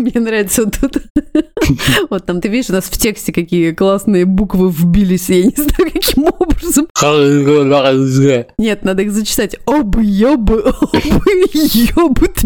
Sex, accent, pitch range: female, native, 180-235 Hz